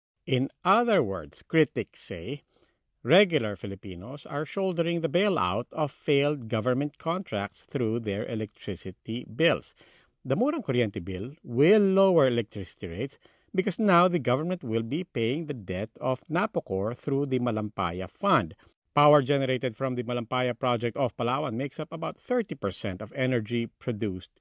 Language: English